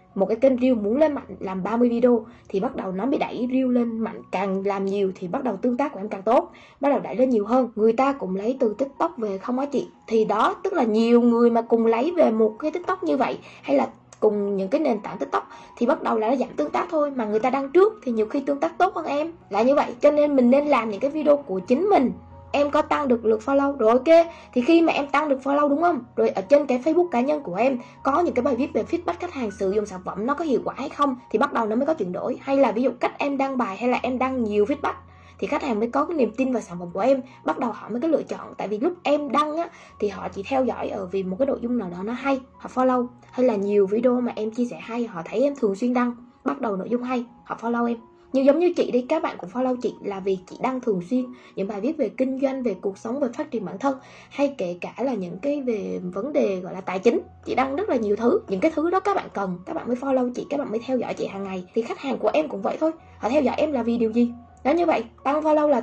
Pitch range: 220-285 Hz